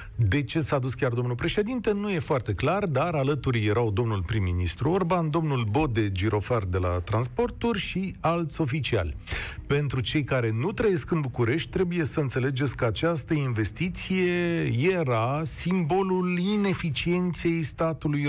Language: Romanian